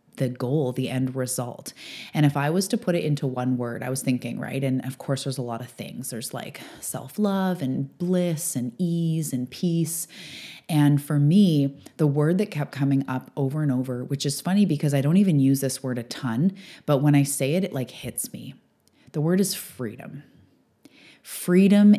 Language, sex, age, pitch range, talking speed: English, female, 20-39, 130-165 Hz, 205 wpm